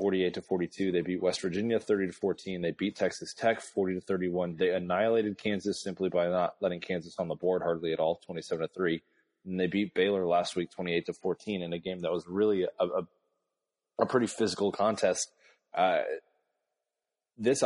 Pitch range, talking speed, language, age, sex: 85-100 Hz, 190 wpm, English, 30-49, male